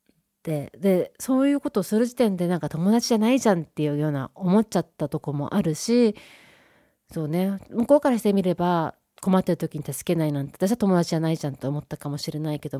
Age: 40-59